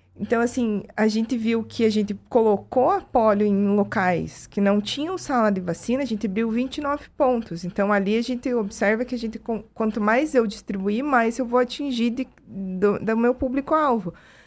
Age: 20-39